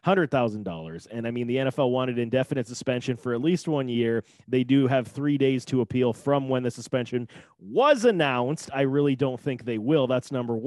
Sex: male